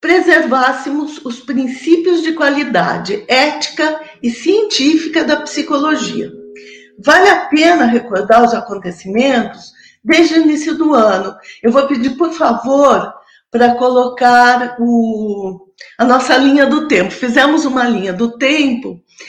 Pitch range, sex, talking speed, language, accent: 230-300 Hz, female, 120 wpm, Portuguese, Brazilian